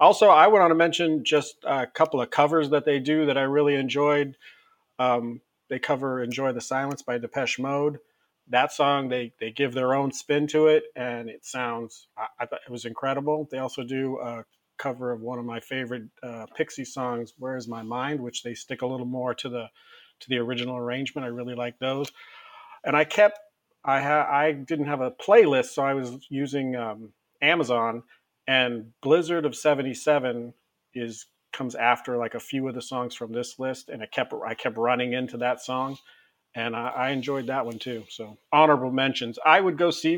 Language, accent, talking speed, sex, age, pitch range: English, American, 200 wpm, male, 40-59, 120-145 Hz